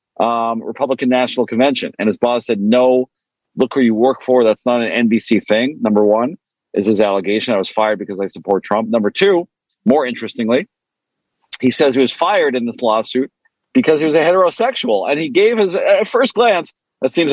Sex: male